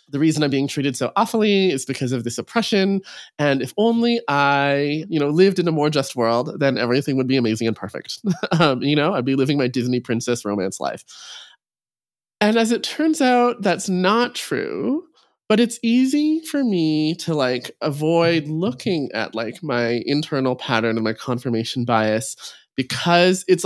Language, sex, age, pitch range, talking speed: English, male, 20-39, 120-170 Hz, 180 wpm